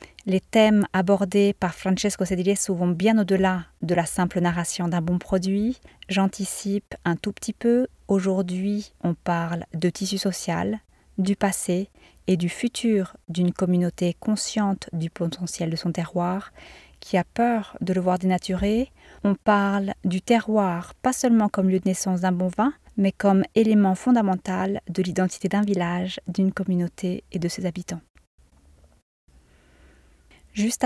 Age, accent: 30-49, French